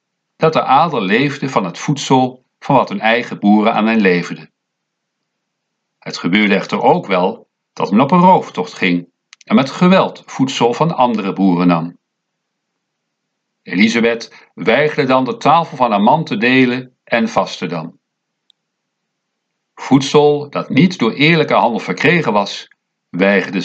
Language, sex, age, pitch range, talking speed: Dutch, male, 50-69, 100-145 Hz, 140 wpm